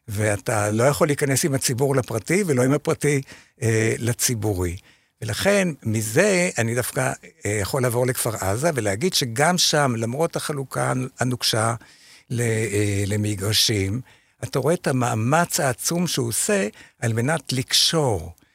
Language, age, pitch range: Hebrew, 60-79, 110-145 Hz